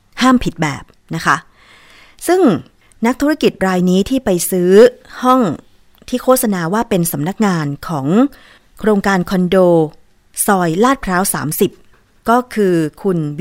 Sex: female